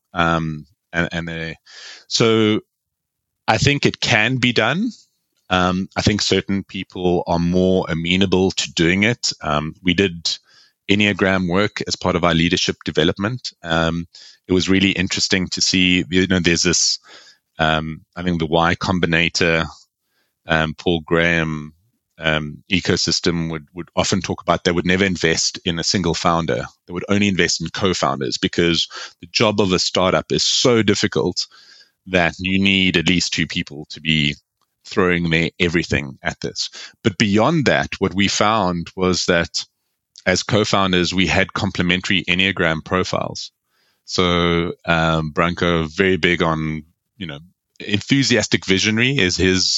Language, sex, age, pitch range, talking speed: English, male, 30-49, 85-95 Hz, 155 wpm